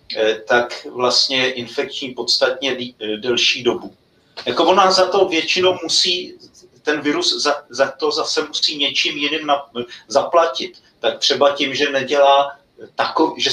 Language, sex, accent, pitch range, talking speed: Czech, male, native, 130-165 Hz, 135 wpm